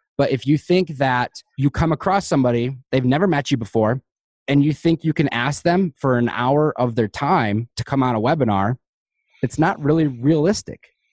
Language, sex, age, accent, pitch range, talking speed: English, male, 20-39, American, 110-140 Hz, 195 wpm